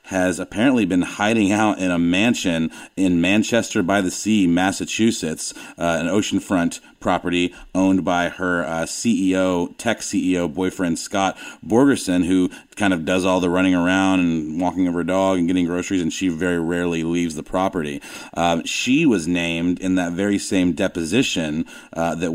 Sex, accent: male, American